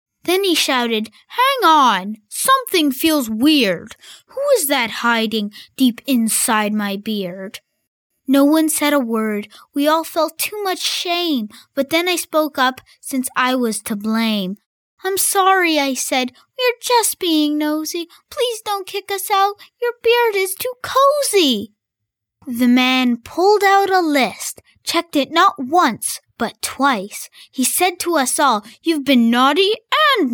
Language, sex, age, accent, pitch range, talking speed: English, female, 20-39, American, 255-360 Hz, 150 wpm